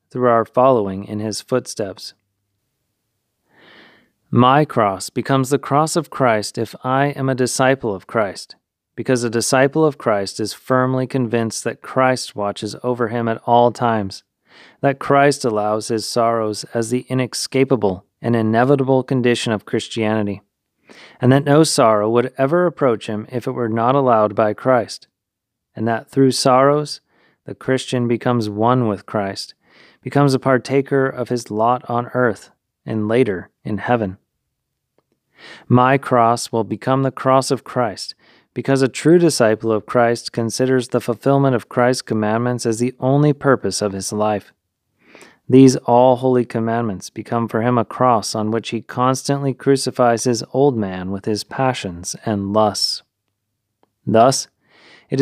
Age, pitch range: 30-49, 110-130 Hz